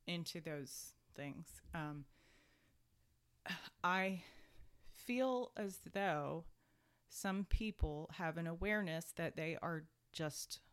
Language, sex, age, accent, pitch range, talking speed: English, female, 30-49, American, 150-185 Hz, 95 wpm